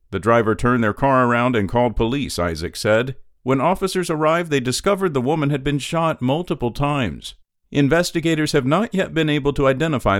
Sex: male